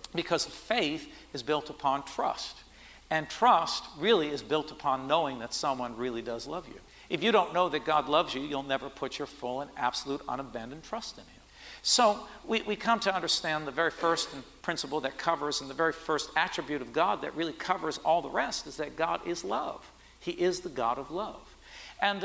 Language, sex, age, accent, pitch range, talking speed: English, male, 60-79, American, 135-165 Hz, 200 wpm